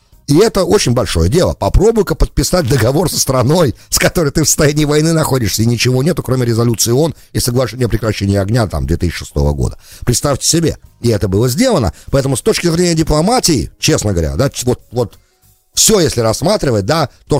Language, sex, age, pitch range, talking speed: English, male, 50-69, 100-150 Hz, 180 wpm